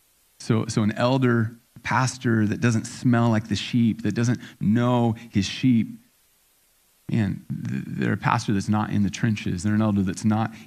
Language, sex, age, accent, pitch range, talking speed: English, male, 30-49, American, 100-115 Hz, 170 wpm